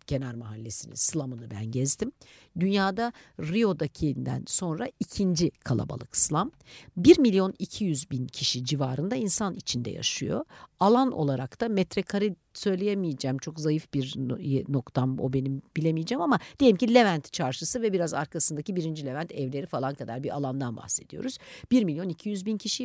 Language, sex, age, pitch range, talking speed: Turkish, female, 60-79, 145-210 Hz, 140 wpm